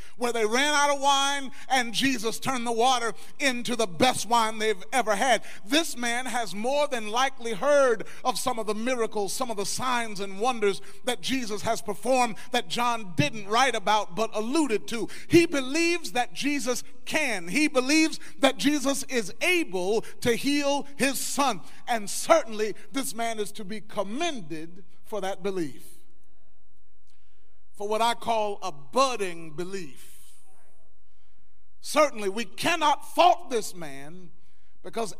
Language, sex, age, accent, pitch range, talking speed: English, male, 40-59, American, 210-285 Hz, 150 wpm